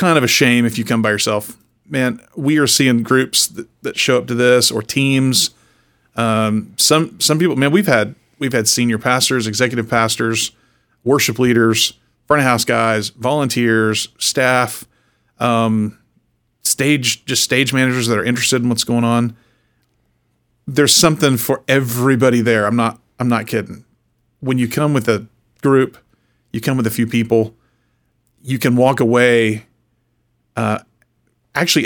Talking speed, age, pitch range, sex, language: 155 wpm, 40-59, 115-135 Hz, male, English